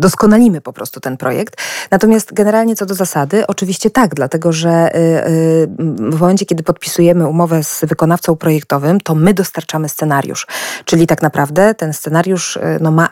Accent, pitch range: native, 155-185 Hz